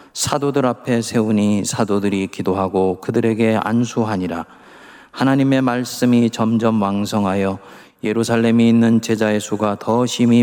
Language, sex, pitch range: Korean, male, 95-115 Hz